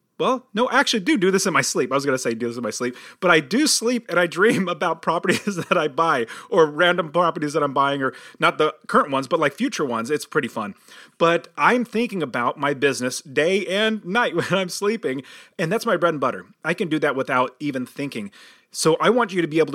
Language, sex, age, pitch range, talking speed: English, male, 30-49, 140-195 Hz, 250 wpm